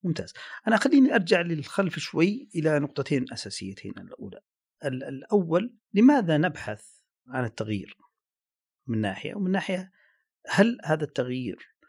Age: 40-59